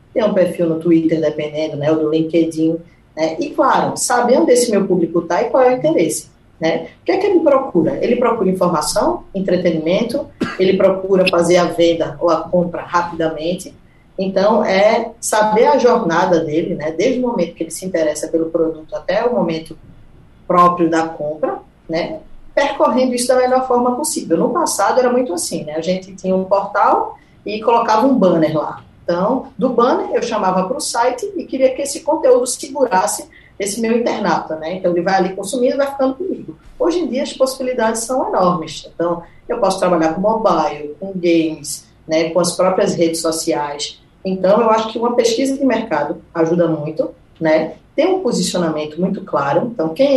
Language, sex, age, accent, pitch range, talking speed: Portuguese, female, 20-39, Brazilian, 165-240 Hz, 185 wpm